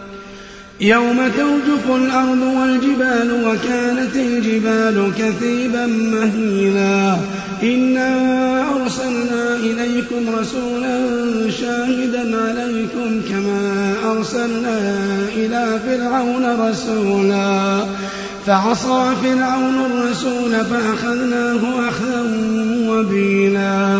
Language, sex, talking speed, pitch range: Arabic, male, 65 wpm, 200-250 Hz